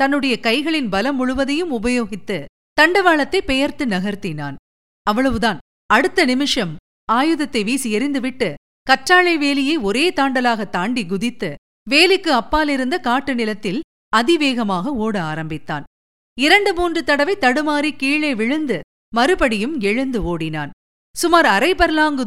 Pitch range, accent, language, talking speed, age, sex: 200-295 Hz, native, Tamil, 100 wpm, 50-69, female